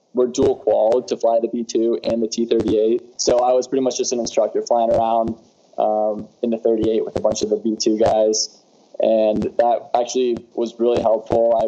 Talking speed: 195 wpm